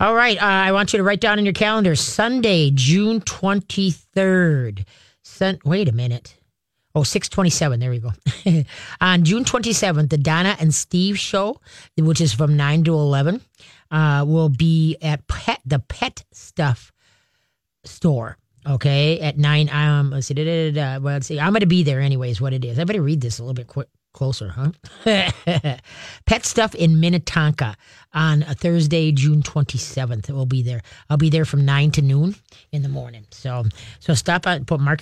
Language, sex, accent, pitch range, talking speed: English, female, American, 135-170 Hz, 170 wpm